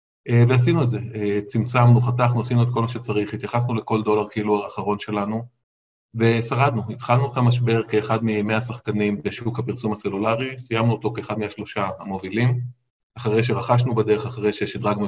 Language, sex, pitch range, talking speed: Hebrew, male, 105-125 Hz, 145 wpm